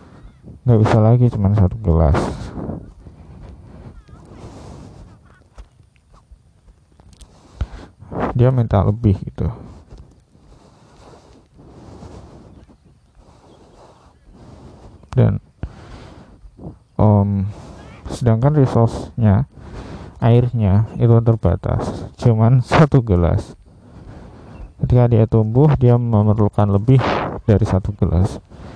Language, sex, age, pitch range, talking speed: Indonesian, male, 20-39, 95-115 Hz, 65 wpm